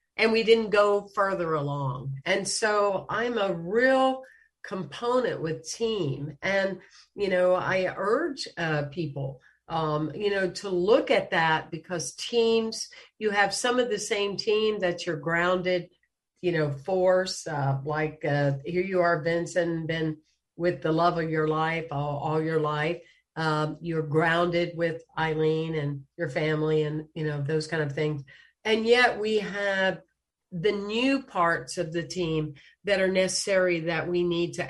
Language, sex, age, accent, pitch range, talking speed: English, female, 50-69, American, 160-205 Hz, 160 wpm